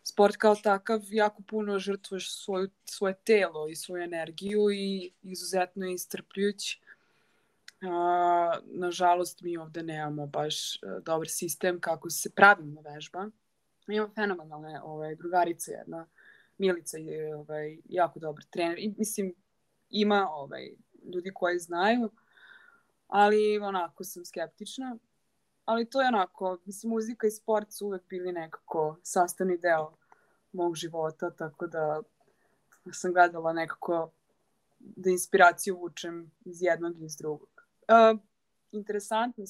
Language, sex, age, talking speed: Croatian, female, 20-39, 120 wpm